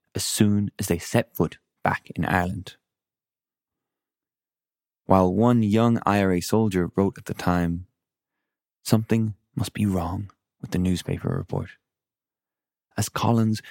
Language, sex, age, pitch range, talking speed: English, male, 20-39, 90-110 Hz, 125 wpm